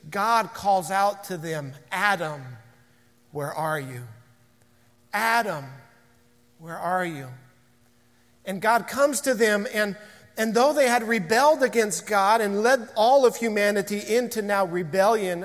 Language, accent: English, American